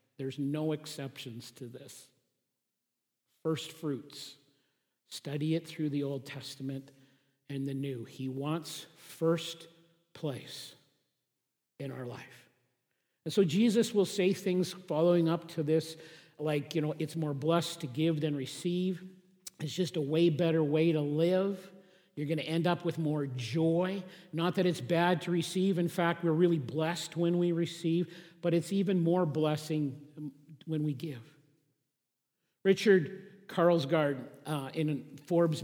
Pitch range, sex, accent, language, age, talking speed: 145-170 Hz, male, American, English, 50-69, 145 wpm